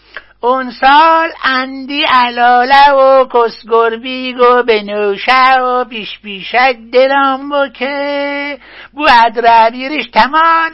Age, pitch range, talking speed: 60-79, 245-305 Hz, 110 wpm